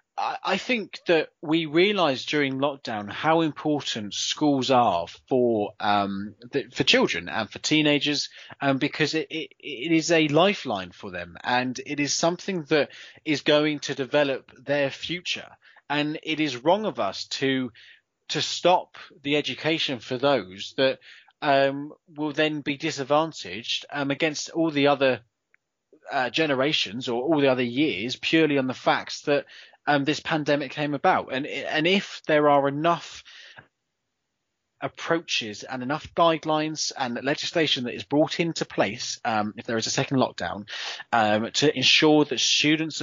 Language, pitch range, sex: English, 120-155 Hz, male